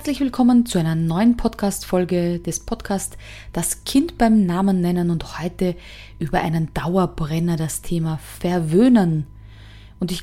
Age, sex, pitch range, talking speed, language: 20-39, female, 165-220 Hz, 135 wpm, German